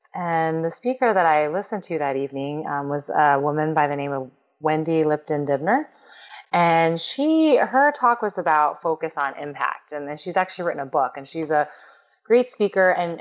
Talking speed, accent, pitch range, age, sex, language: 190 wpm, American, 145-175 Hz, 30-49, female, English